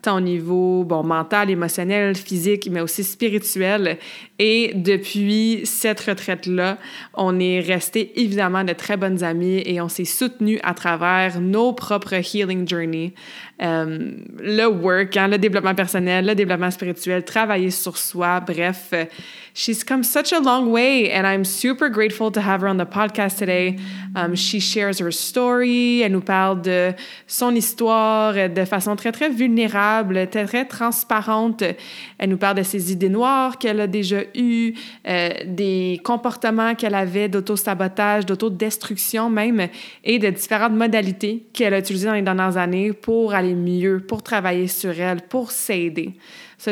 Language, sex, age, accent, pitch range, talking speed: French, female, 20-39, Canadian, 185-225 Hz, 155 wpm